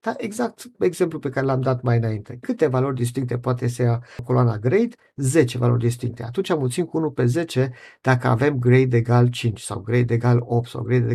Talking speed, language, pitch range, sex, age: 200 wpm, Romanian, 120-140 Hz, male, 50-69